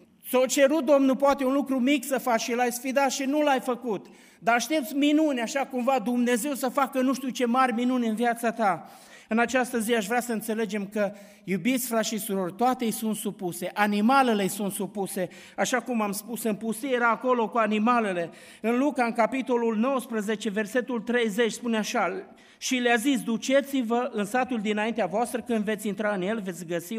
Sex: male